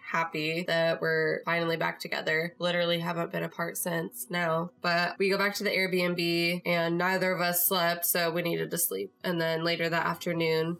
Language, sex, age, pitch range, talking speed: English, female, 20-39, 170-195 Hz, 190 wpm